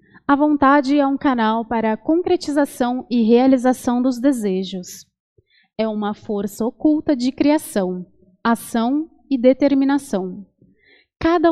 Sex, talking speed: female, 115 wpm